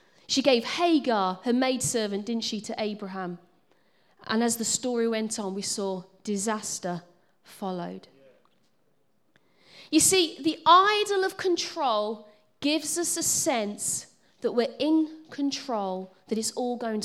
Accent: British